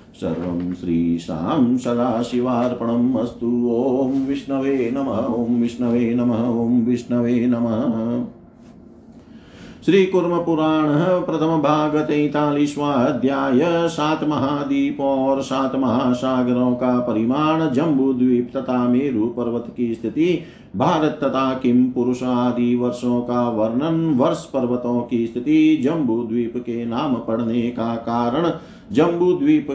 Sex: male